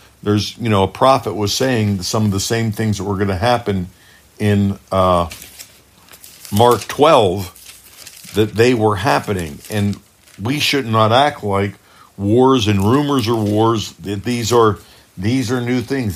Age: 50-69